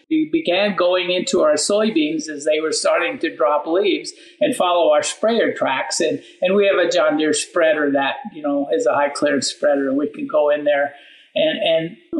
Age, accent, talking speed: 50-69, American, 205 wpm